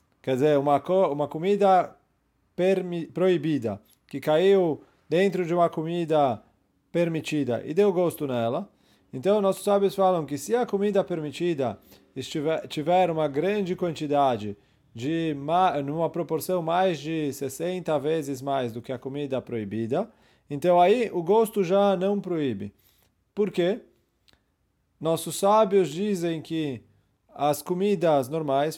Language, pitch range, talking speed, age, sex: English, 140-185 Hz, 120 wpm, 30-49, male